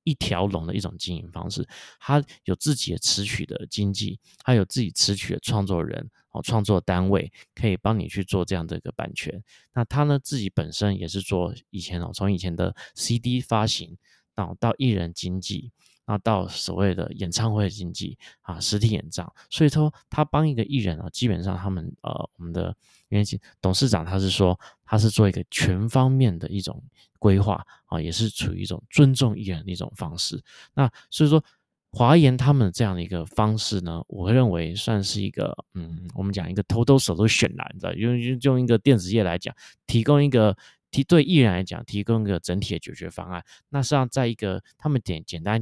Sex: male